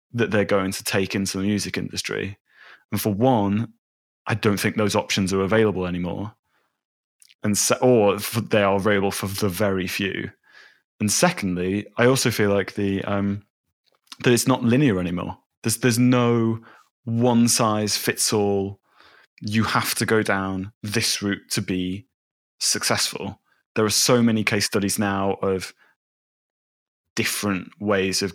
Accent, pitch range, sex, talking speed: British, 95-110 Hz, male, 145 wpm